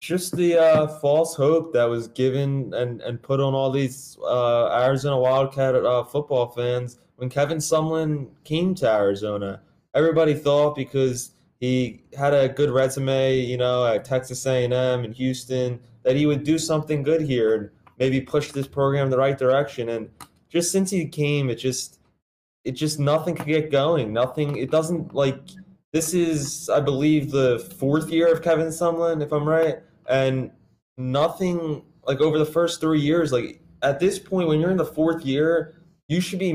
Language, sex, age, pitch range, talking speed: English, male, 20-39, 130-160 Hz, 175 wpm